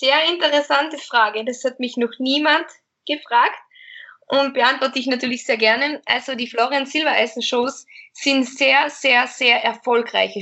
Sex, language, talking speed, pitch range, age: female, German, 145 wpm, 225-275 Hz, 20-39